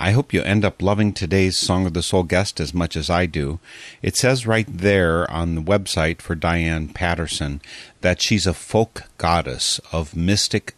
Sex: male